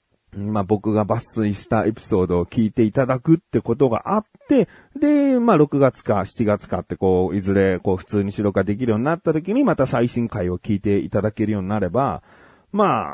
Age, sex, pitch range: 40-59, male, 100-165 Hz